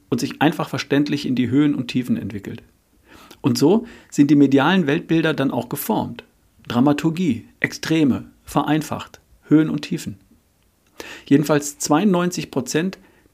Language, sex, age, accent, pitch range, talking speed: German, male, 40-59, German, 135-165 Hz, 120 wpm